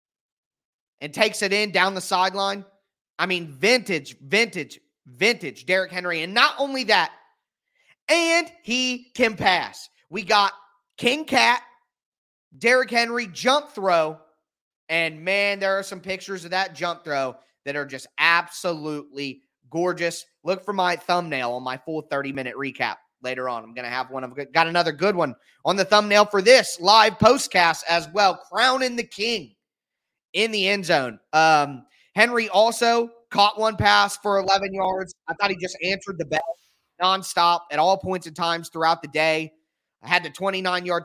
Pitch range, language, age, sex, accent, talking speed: 165-210 Hz, English, 30-49, male, American, 165 wpm